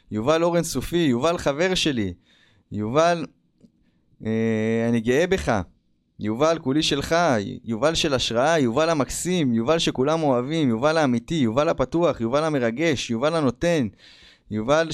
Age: 20-39